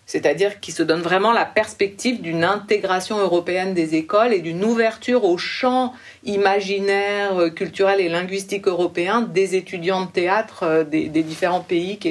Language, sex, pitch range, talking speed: French, female, 180-240 Hz, 150 wpm